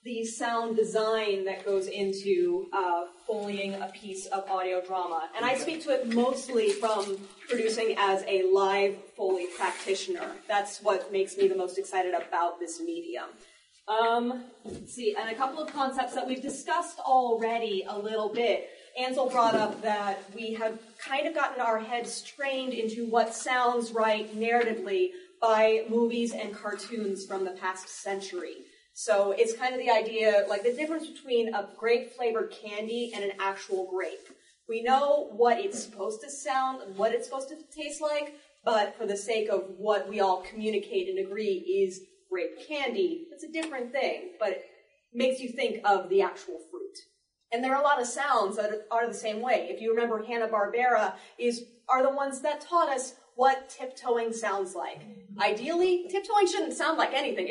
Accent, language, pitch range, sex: American, English, 205-275 Hz, female